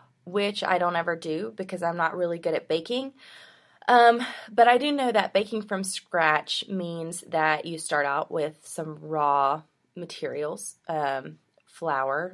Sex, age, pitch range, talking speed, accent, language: female, 20-39, 150-195 Hz, 155 wpm, American, English